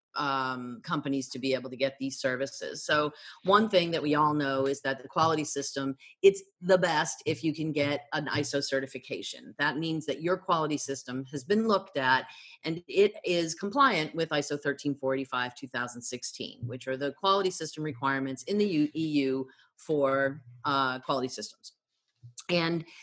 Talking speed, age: 165 wpm, 40-59